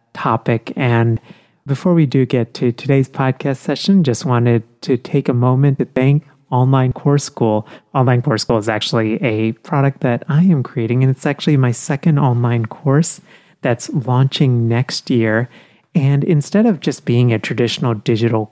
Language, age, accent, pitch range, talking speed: English, 30-49, American, 115-140 Hz, 165 wpm